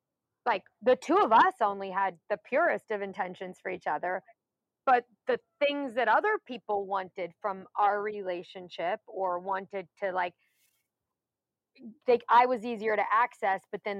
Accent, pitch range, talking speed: American, 195-255 Hz, 150 wpm